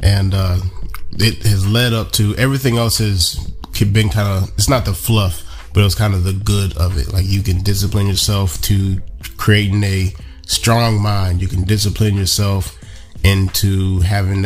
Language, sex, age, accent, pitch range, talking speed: English, male, 20-39, American, 95-105 Hz, 175 wpm